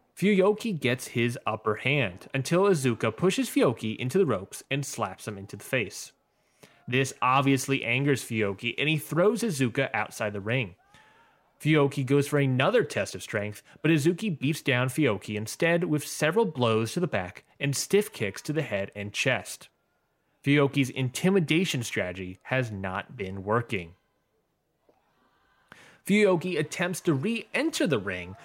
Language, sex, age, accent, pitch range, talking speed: English, male, 20-39, American, 120-165 Hz, 150 wpm